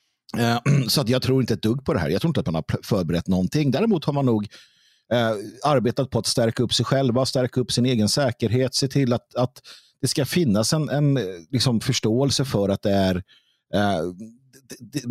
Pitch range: 110-155 Hz